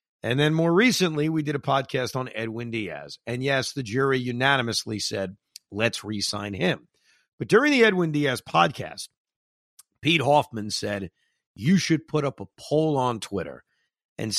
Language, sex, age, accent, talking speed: English, male, 50-69, American, 160 wpm